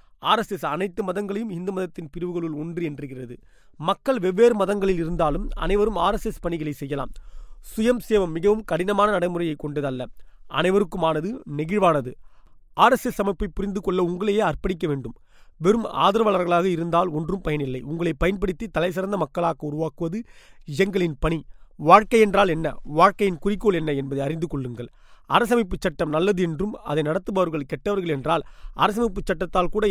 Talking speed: 130 wpm